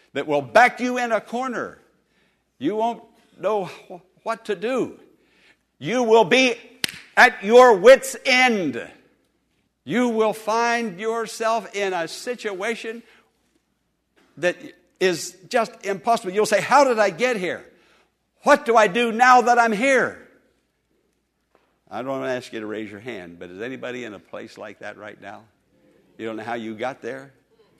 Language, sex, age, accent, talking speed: English, male, 60-79, American, 160 wpm